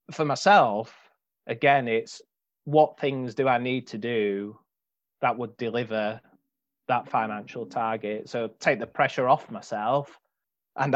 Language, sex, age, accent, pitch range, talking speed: English, male, 30-49, British, 115-145 Hz, 130 wpm